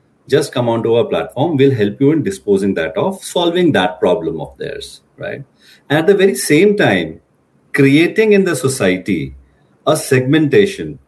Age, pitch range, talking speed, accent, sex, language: 40-59, 125-165 Hz, 160 wpm, Indian, male, English